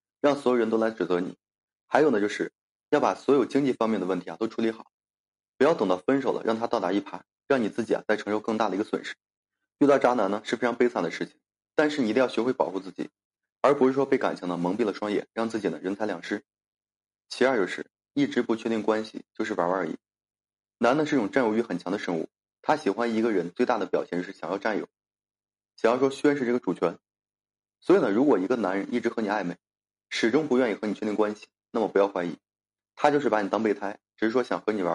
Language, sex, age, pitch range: Chinese, male, 20-39, 100-120 Hz